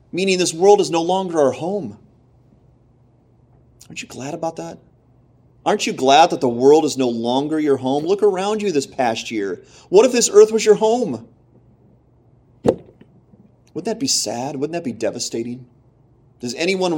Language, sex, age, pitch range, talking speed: English, male, 30-49, 115-145 Hz, 165 wpm